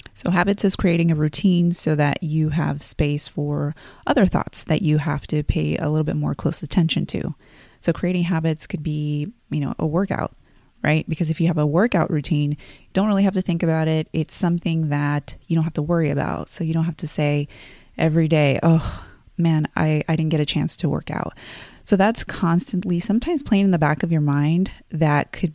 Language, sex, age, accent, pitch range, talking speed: English, female, 30-49, American, 150-185 Hz, 215 wpm